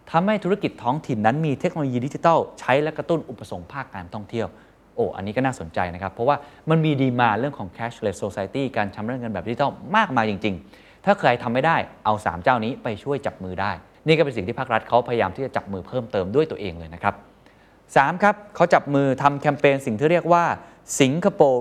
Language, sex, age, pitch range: Thai, male, 20-39, 105-150 Hz